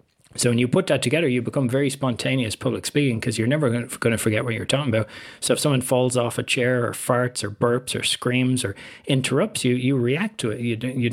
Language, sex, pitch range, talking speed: English, male, 110-130 Hz, 230 wpm